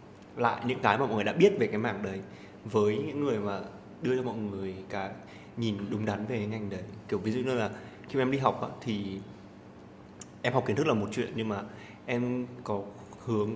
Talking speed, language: 215 wpm, Vietnamese